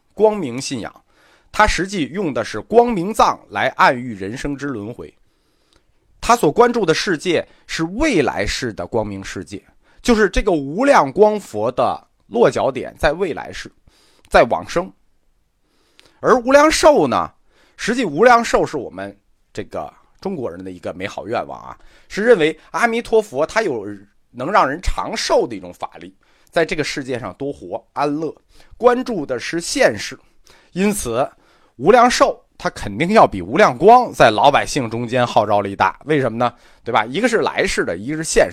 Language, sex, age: Chinese, male, 30-49